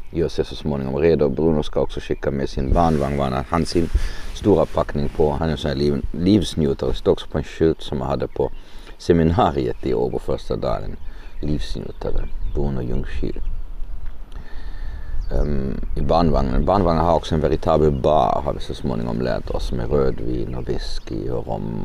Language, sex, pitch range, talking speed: Swedish, male, 70-85 Hz, 160 wpm